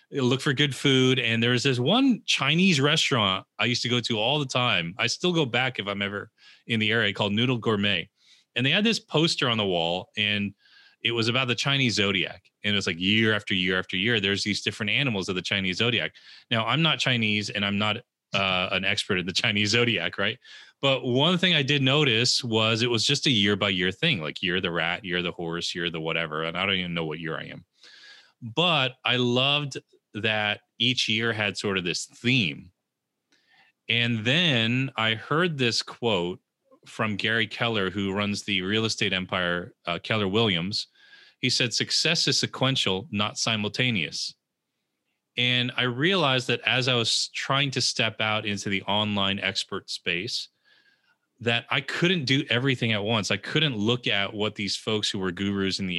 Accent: American